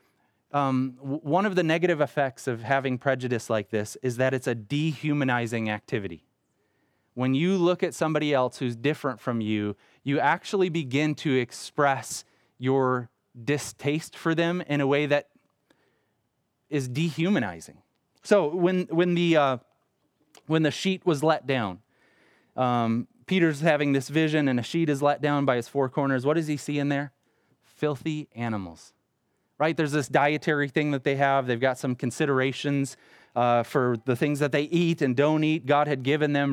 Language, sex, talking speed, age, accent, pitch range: English, male, 170 wpm, 20-39, American, 130-160 Hz